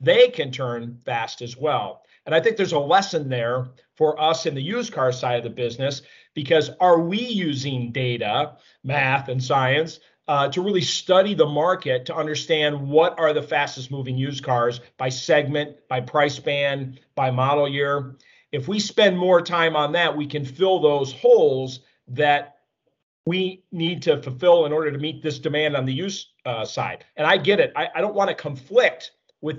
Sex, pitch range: male, 130-170 Hz